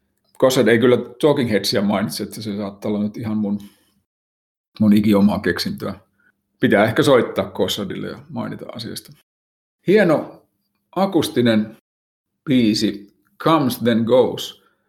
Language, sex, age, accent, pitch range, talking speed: Finnish, male, 50-69, native, 105-120 Hz, 115 wpm